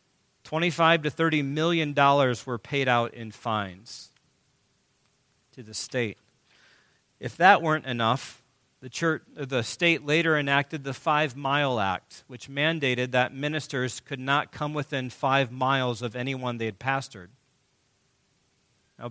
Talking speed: 130 wpm